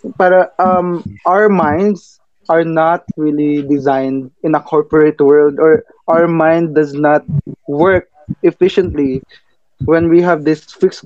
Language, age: Filipino, 20-39